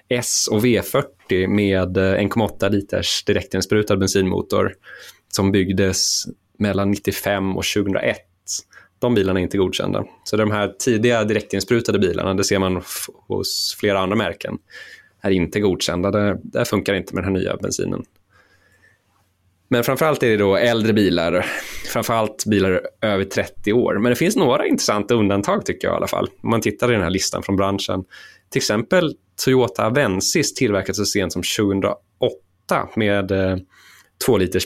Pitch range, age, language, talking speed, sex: 95-110 Hz, 20-39, Swedish, 150 wpm, male